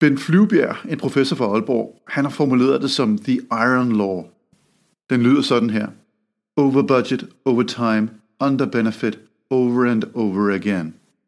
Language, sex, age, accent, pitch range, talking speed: Danish, male, 50-69, native, 110-145 Hz, 150 wpm